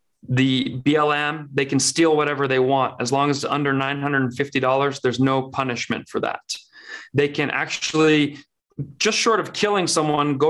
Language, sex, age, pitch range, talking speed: English, male, 30-49, 130-155 Hz, 160 wpm